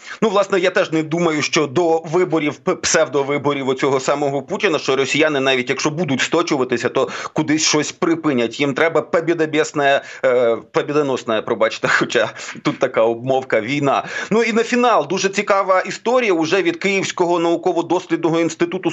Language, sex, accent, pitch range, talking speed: Ukrainian, male, native, 150-185 Hz, 150 wpm